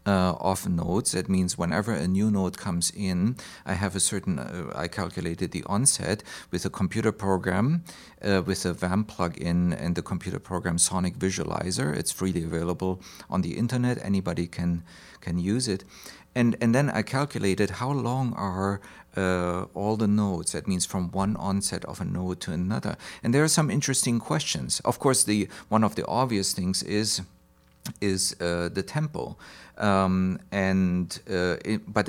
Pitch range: 90-110 Hz